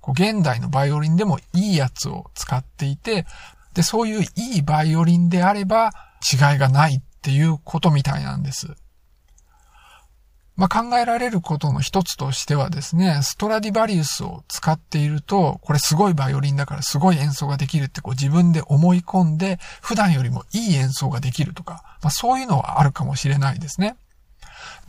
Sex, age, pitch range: male, 50-69, 145-190 Hz